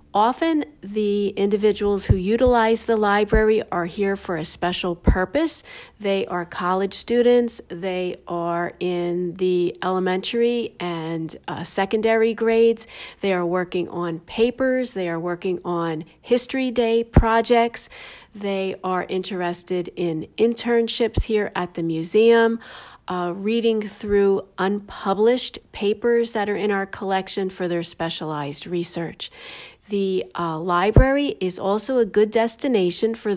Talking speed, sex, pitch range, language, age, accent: 125 wpm, female, 180-230 Hz, English, 40-59, American